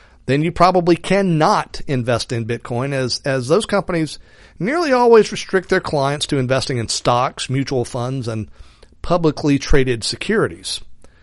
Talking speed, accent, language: 140 wpm, American, English